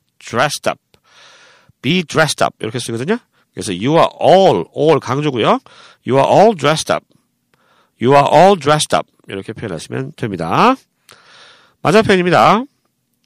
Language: Korean